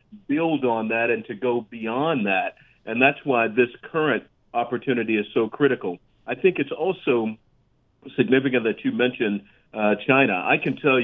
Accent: American